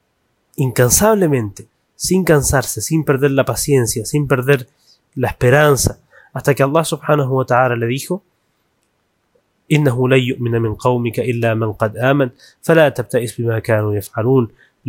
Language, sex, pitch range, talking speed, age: Spanish, male, 115-150 Hz, 130 wpm, 20-39